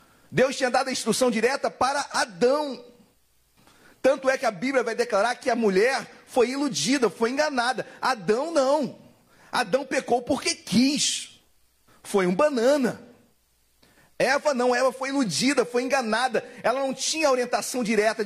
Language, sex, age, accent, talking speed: Portuguese, male, 40-59, Brazilian, 140 wpm